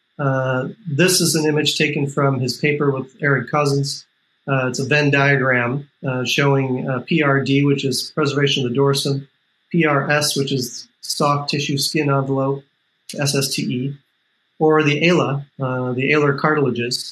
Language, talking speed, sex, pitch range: English, 145 wpm, male, 130-150 Hz